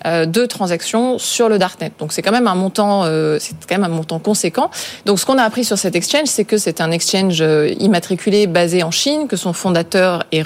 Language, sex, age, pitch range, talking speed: French, female, 20-39, 175-225 Hz, 220 wpm